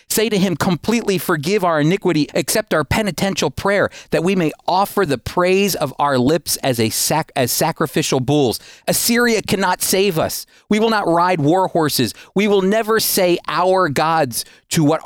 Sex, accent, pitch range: male, American, 130-185 Hz